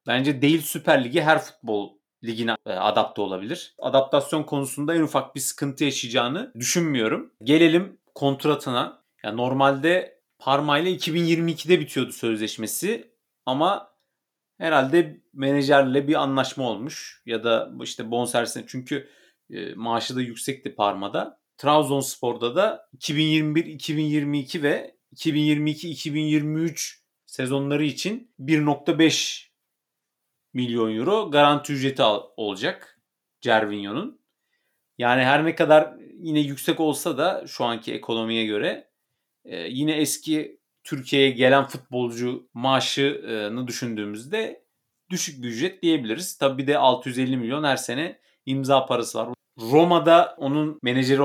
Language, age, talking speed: Turkish, 40-59, 110 wpm